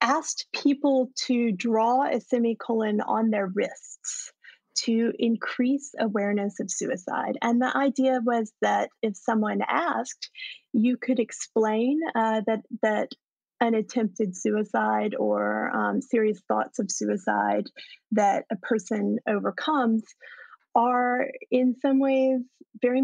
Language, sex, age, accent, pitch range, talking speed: English, female, 30-49, American, 215-255 Hz, 120 wpm